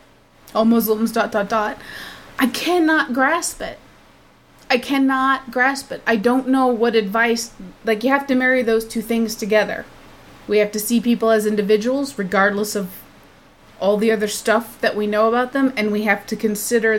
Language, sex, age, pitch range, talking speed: English, female, 20-39, 205-250 Hz, 175 wpm